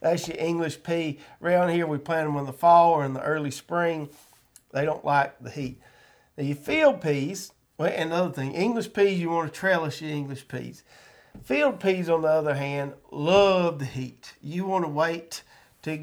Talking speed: 190 wpm